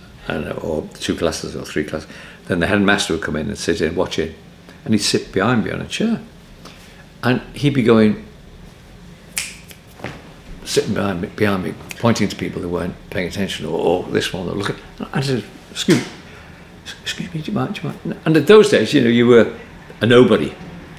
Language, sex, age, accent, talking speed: English, male, 60-79, British, 200 wpm